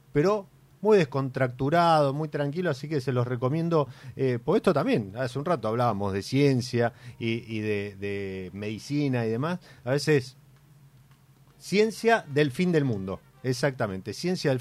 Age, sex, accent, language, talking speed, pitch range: 40-59, male, Argentinian, Spanish, 150 wpm, 115-145 Hz